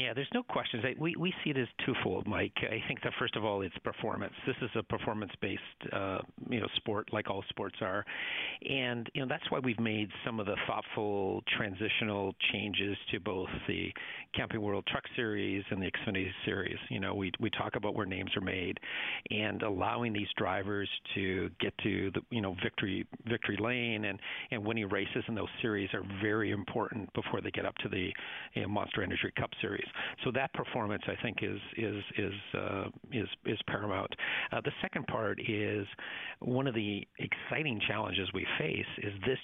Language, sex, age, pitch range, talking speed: English, male, 50-69, 100-115 Hz, 190 wpm